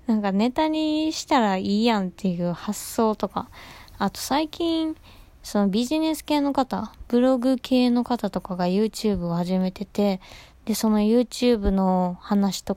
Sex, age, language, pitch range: female, 20-39, Japanese, 185-245 Hz